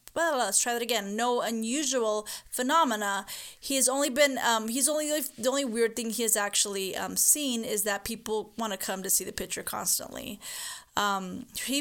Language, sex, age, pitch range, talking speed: English, female, 20-39, 205-250 Hz, 190 wpm